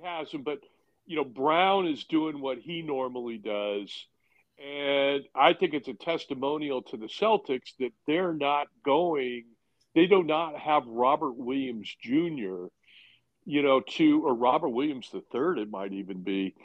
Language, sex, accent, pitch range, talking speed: English, male, American, 130-170 Hz, 155 wpm